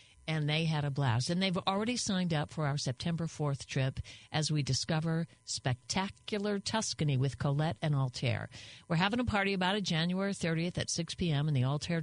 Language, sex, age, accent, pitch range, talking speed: English, female, 50-69, American, 135-175 Hz, 190 wpm